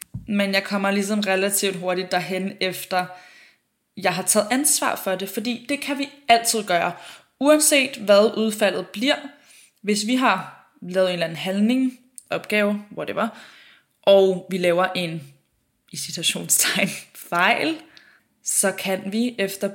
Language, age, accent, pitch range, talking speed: Danish, 20-39, native, 180-210 Hz, 135 wpm